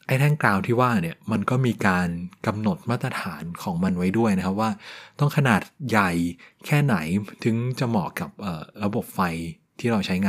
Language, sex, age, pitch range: Thai, male, 20-39, 95-135 Hz